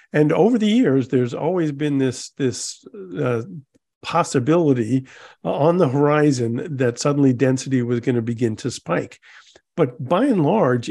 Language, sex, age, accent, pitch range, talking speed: English, male, 50-69, American, 115-150 Hz, 150 wpm